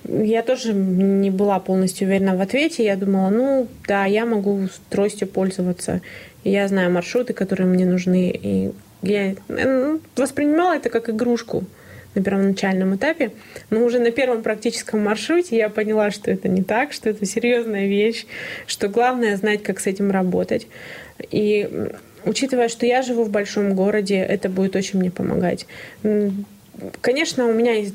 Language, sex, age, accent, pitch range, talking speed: Russian, female, 20-39, native, 195-245 Hz, 150 wpm